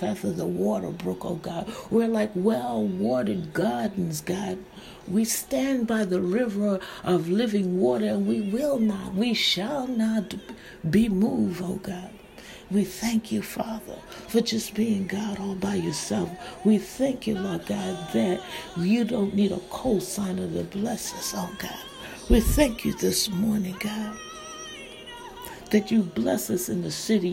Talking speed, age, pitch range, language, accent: 155 wpm, 60-79, 185-225 Hz, English, American